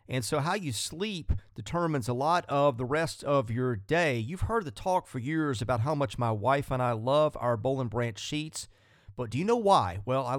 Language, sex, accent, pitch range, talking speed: English, male, American, 115-155 Hz, 225 wpm